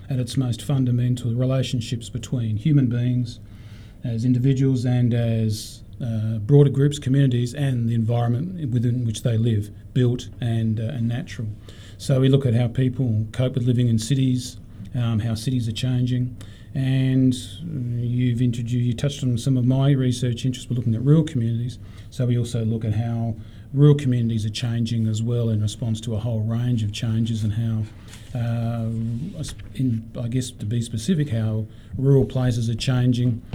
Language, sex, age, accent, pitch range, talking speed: English, male, 40-59, Australian, 110-125 Hz, 170 wpm